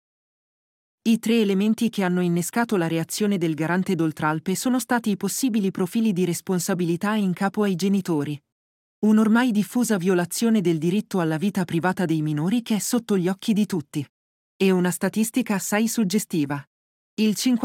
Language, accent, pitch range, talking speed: Italian, native, 170-215 Hz, 155 wpm